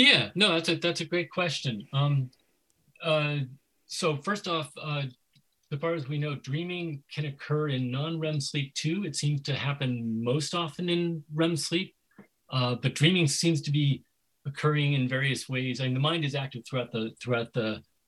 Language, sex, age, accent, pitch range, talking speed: English, male, 40-59, American, 125-155 Hz, 175 wpm